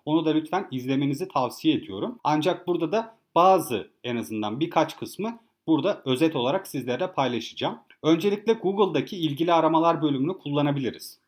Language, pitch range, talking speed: Turkish, 140-190 Hz, 135 wpm